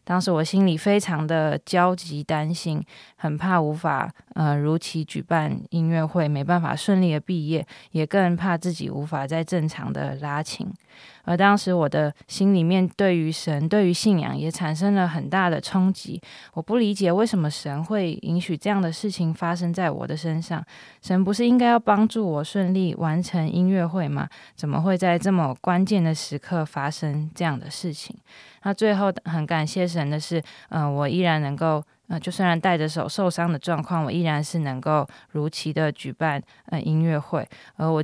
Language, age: Chinese, 20-39